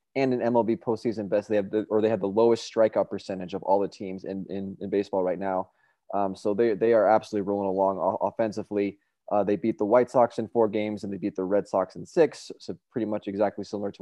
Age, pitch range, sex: 20-39, 100-120 Hz, male